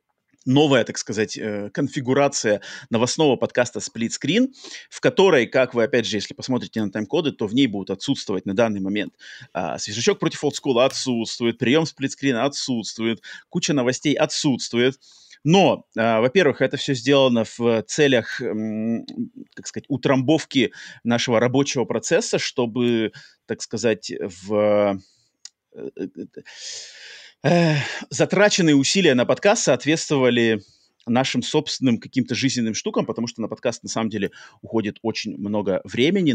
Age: 30-49